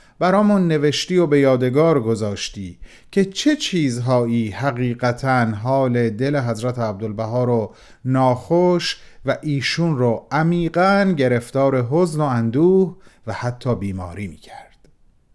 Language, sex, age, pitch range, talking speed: Persian, male, 40-59, 125-160 Hz, 110 wpm